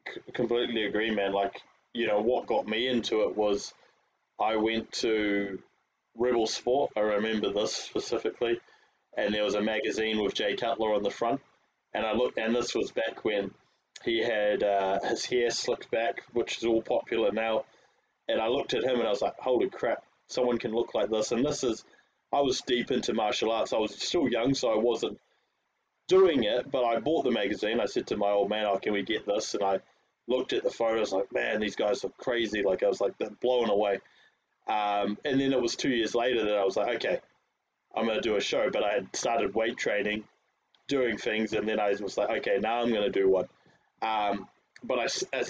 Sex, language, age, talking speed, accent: male, English, 20-39, 215 wpm, Australian